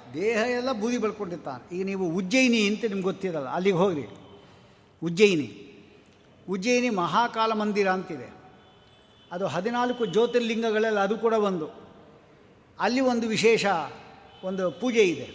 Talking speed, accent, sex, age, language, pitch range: 115 wpm, native, male, 60-79, Kannada, 175-235 Hz